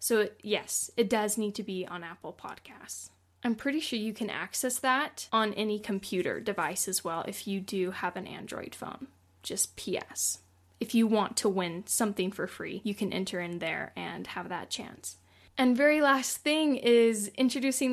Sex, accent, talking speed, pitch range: female, American, 185 wpm, 195-240 Hz